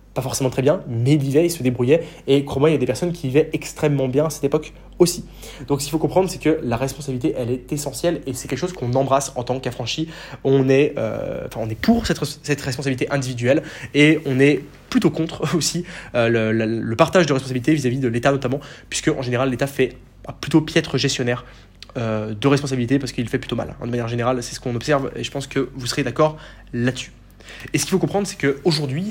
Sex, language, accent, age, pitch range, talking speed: male, French, French, 20-39, 125-155 Hz, 235 wpm